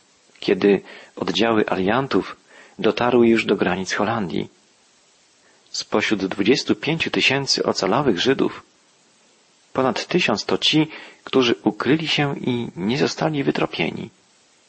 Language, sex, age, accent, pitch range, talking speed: Polish, male, 40-59, native, 105-130 Hz, 100 wpm